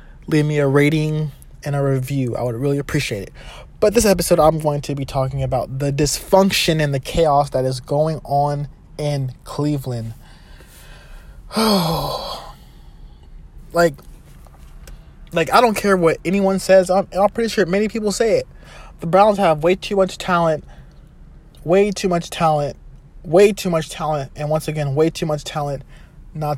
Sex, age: male, 20-39